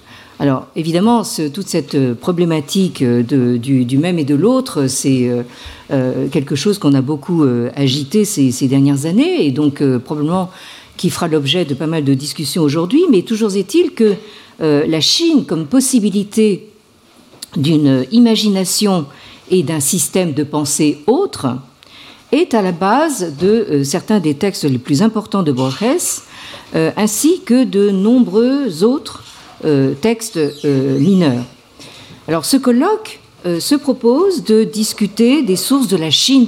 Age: 50-69